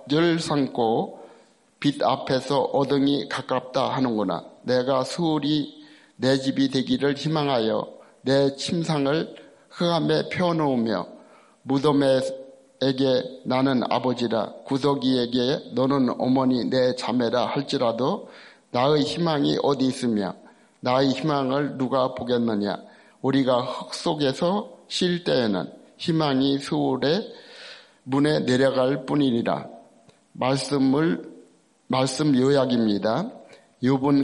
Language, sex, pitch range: Korean, male, 130-145 Hz